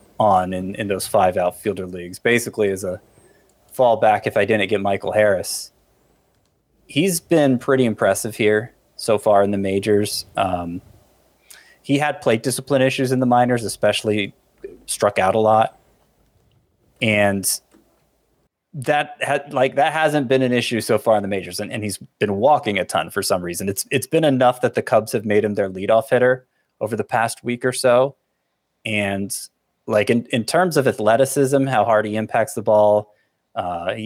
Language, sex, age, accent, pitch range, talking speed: English, male, 30-49, American, 100-130 Hz, 175 wpm